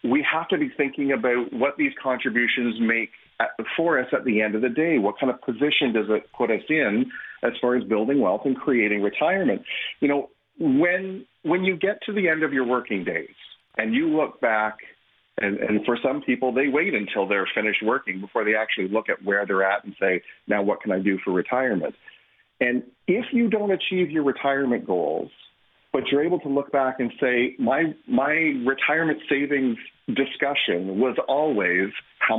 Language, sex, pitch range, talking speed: English, male, 115-150 Hz, 195 wpm